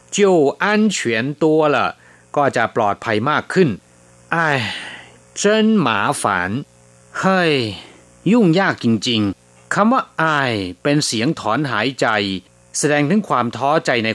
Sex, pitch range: male, 95-145 Hz